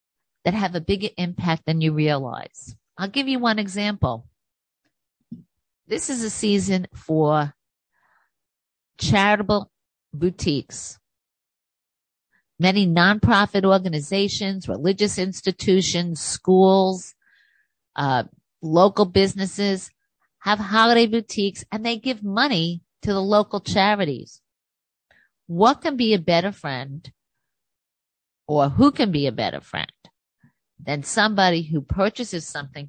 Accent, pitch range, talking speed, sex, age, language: American, 145-205 Hz, 105 wpm, female, 50-69, English